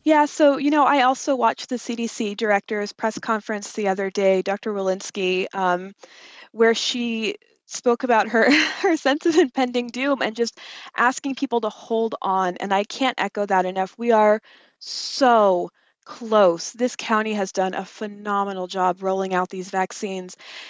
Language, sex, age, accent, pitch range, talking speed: English, female, 20-39, American, 195-250 Hz, 160 wpm